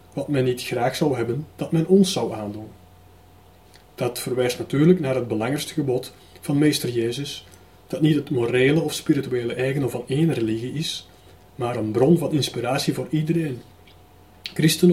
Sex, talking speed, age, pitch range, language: male, 160 wpm, 30-49, 110-155 Hz, Dutch